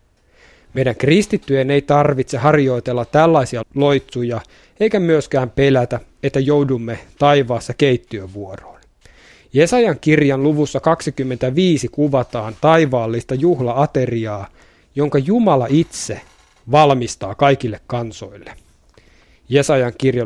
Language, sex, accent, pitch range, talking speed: Finnish, male, native, 120-150 Hz, 90 wpm